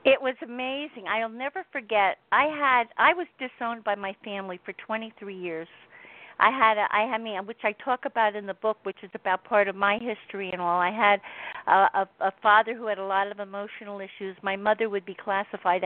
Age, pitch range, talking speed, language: 50-69, 190-225 Hz, 210 wpm, English